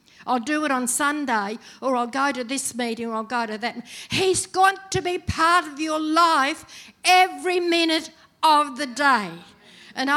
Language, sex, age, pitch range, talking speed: English, female, 60-79, 230-315 Hz, 175 wpm